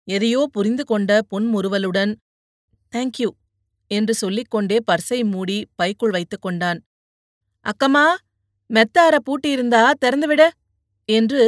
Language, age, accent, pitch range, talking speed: Tamil, 30-49, native, 195-245 Hz, 95 wpm